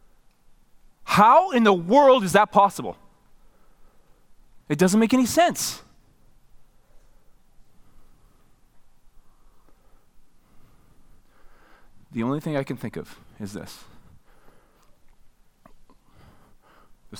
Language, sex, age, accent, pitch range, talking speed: English, male, 20-39, American, 110-185 Hz, 75 wpm